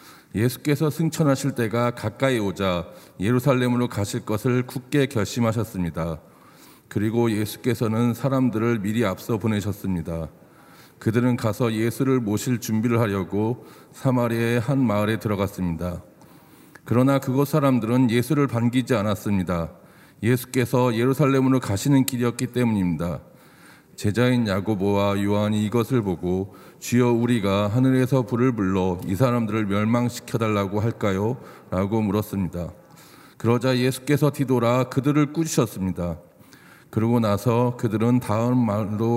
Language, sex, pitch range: Korean, male, 100-130 Hz